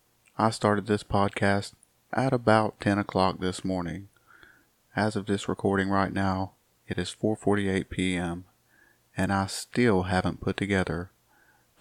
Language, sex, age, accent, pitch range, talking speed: English, male, 30-49, American, 95-110 Hz, 130 wpm